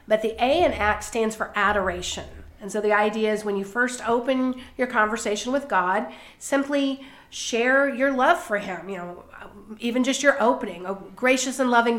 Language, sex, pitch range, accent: English, female, 210-265 Hz, American